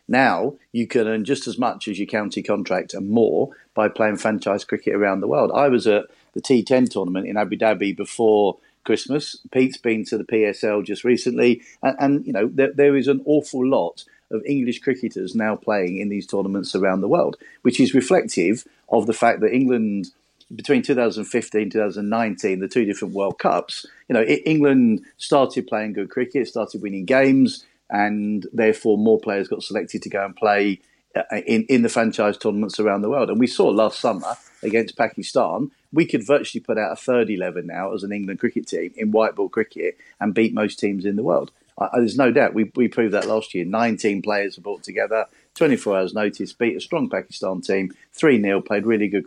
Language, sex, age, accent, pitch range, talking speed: English, male, 40-59, British, 105-130 Hz, 195 wpm